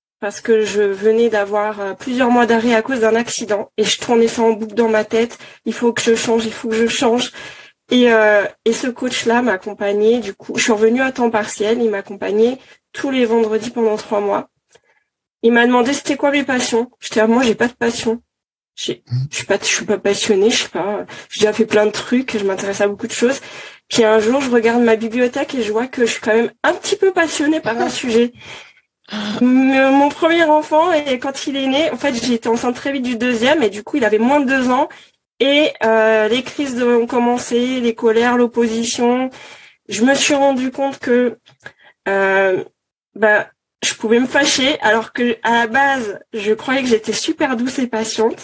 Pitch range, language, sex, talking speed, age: 220-255 Hz, French, female, 215 wpm, 20-39